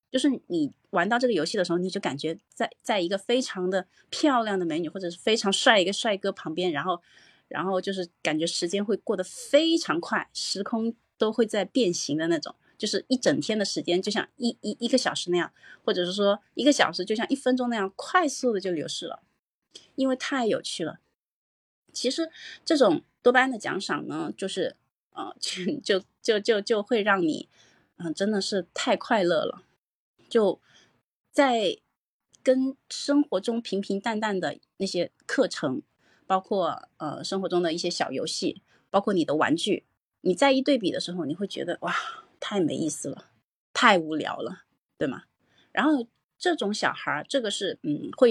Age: 30-49